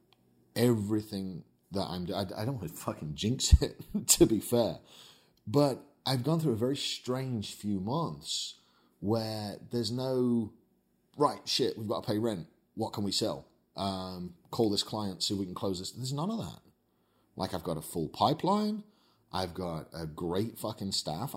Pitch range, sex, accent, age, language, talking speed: 90-115 Hz, male, British, 30-49, English, 175 wpm